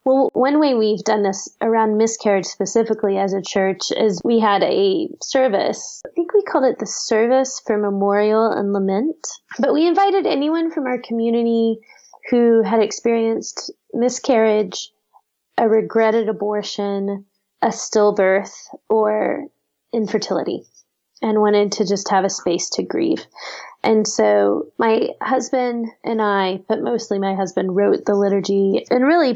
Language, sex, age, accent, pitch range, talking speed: English, female, 20-39, American, 200-255 Hz, 145 wpm